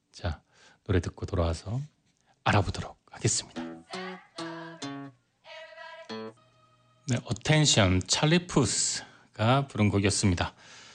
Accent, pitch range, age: native, 95-135 Hz, 40-59